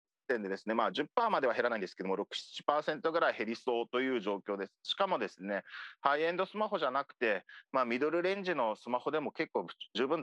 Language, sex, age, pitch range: Japanese, male, 40-59, 115-165 Hz